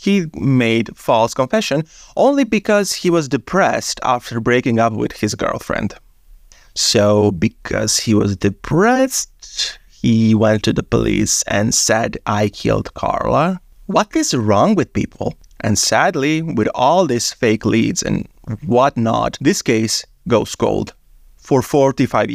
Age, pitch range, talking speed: 30-49, 115-170 Hz, 135 wpm